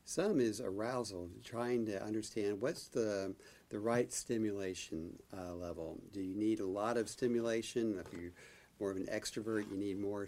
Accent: American